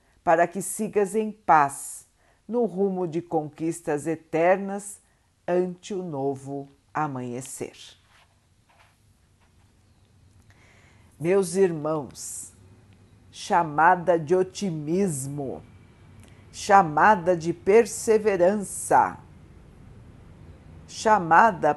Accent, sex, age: Brazilian, female, 50-69